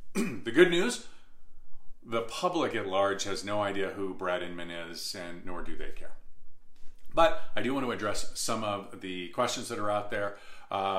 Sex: male